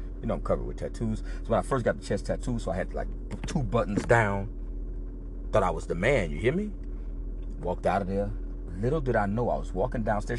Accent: American